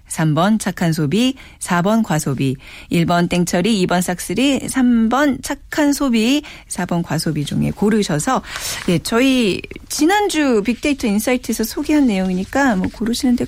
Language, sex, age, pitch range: Korean, female, 40-59, 160-245 Hz